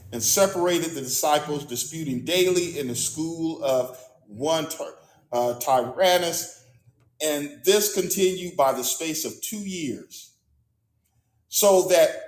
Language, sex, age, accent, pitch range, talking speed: English, male, 40-59, American, 140-195 Hz, 115 wpm